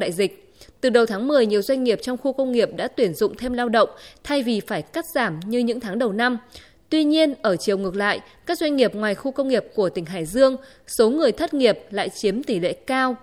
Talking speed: 250 wpm